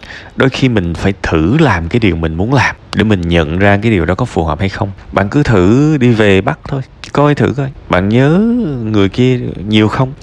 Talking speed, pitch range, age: 230 wpm, 90-130 Hz, 20-39